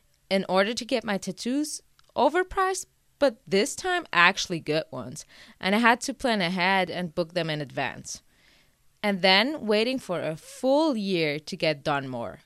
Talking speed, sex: 170 wpm, female